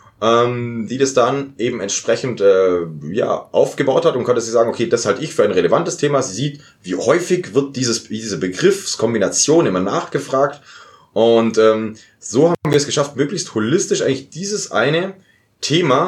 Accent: German